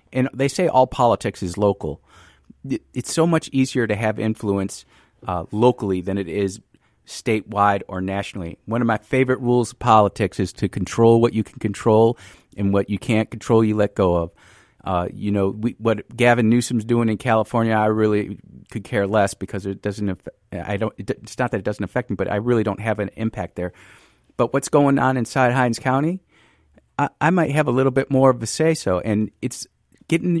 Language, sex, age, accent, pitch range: Japanese, male, 50-69, American, 100-125 Hz